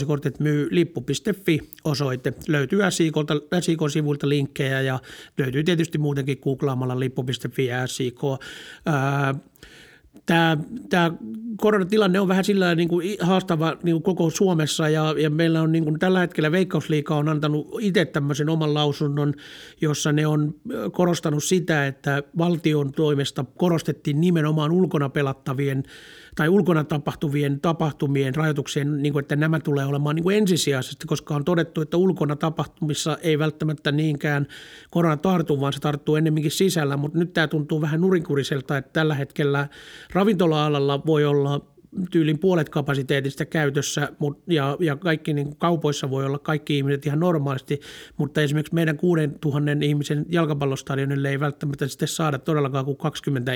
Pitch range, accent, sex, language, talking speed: 140-165 Hz, native, male, Finnish, 135 wpm